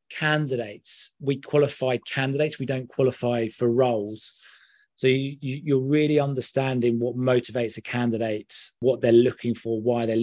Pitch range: 110-125 Hz